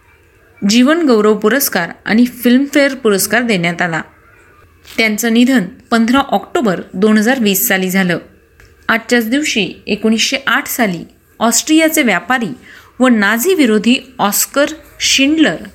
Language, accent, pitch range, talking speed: Marathi, native, 195-255 Hz, 105 wpm